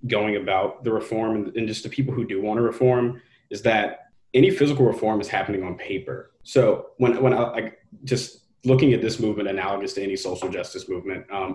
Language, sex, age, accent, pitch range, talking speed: English, male, 20-39, American, 105-130 Hz, 205 wpm